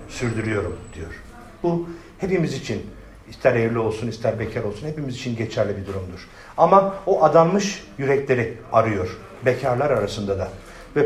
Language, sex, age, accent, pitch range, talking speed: Turkish, male, 50-69, native, 120-180 Hz, 135 wpm